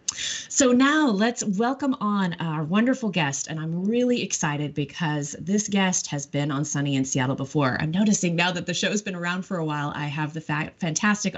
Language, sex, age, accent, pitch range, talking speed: English, female, 30-49, American, 140-185 Hz, 205 wpm